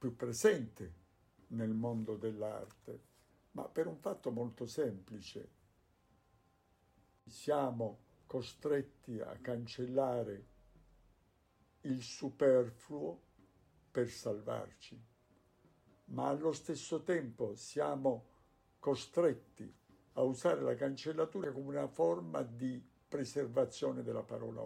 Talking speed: 90 wpm